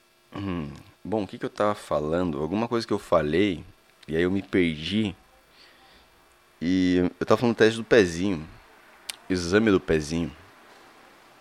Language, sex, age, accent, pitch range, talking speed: Portuguese, male, 20-39, Brazilian, 85-105 Hz, 135 wpm